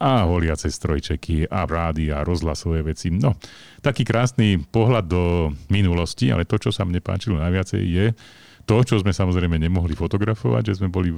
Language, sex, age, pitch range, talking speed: Slovak, male, 40-59, 85-105 Hz, 160 wpm